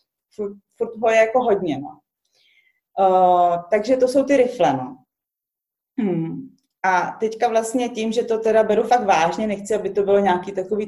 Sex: female